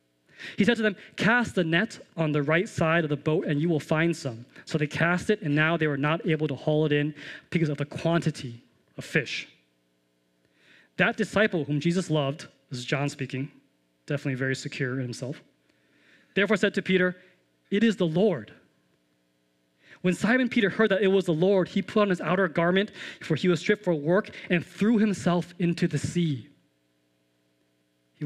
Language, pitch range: English, 115-180 Hz